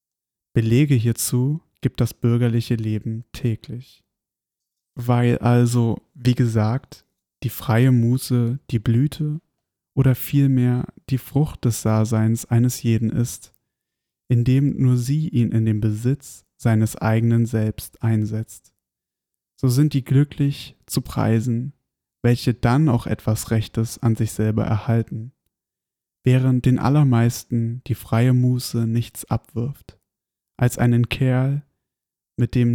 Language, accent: German, German